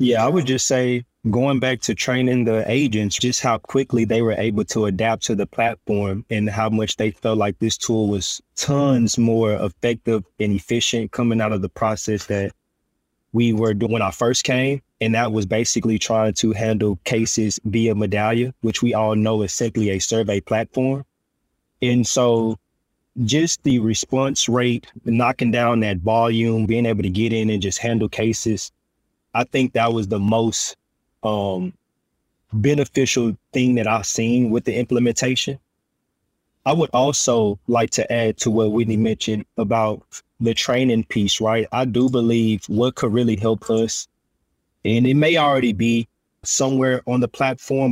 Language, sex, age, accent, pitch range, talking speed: English, male, 20-39, American, 105-120 Hz, 170 wpm